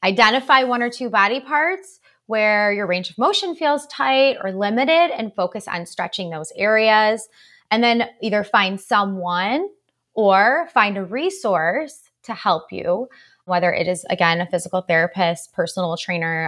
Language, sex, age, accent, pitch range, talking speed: English, female, 20-39, American, 180-235 Hz, 155 wpm